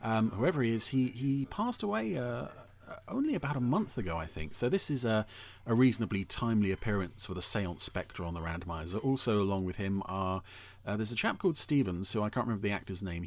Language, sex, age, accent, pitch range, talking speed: English, male, 40-59, British, 90-110 Hz, 220 wpm